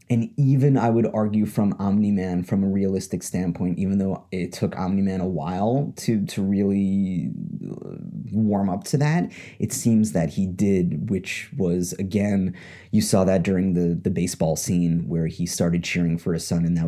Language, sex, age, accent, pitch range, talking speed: English, male, 30-49, American, 85-100 Hz, 185 wpm